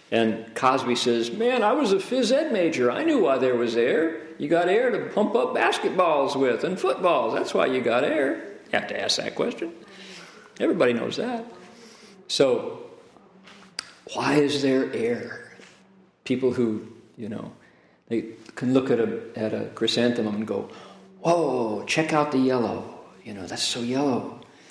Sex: male